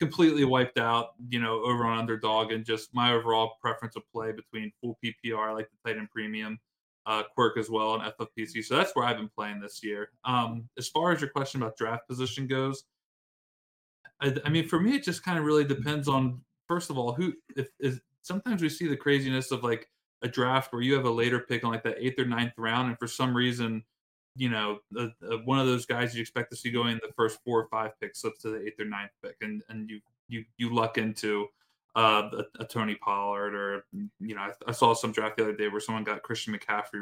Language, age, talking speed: English, 20-39, 235 wpm